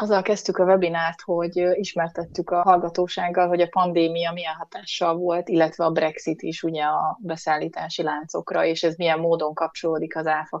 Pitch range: 165-180 Hz